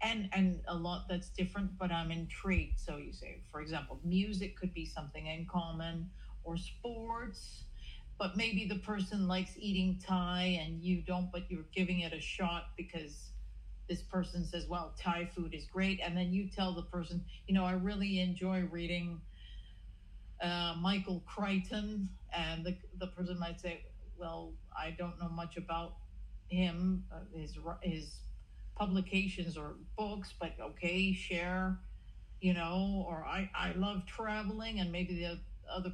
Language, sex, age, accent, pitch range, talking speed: English, female, 50-69, American, 170-200 Hz, 160 wpm